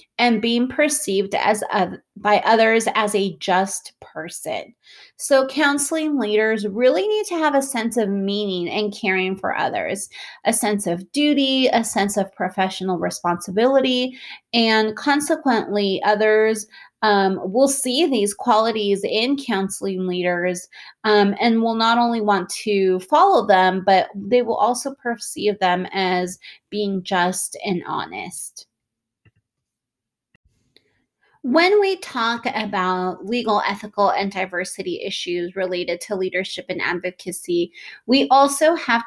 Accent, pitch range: American, 190-240 Hz